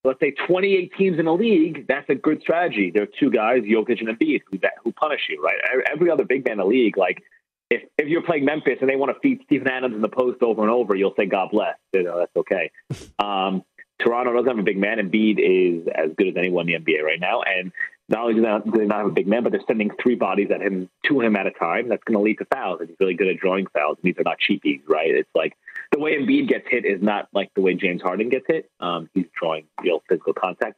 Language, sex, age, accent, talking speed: English, male, 30-49, American, 265 wpm